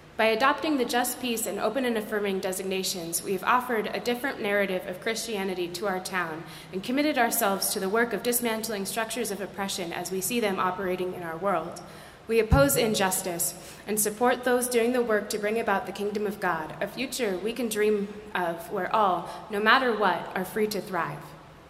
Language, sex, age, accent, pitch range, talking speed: English, female, 20-39, American, 185-235 Hz, 195 wpm